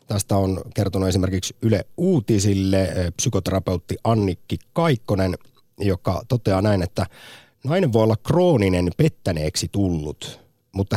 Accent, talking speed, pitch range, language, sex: native, 110 wpm, 90-125 Hz, Finnish, male